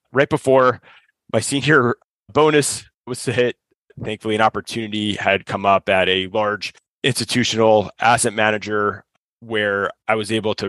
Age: 30-49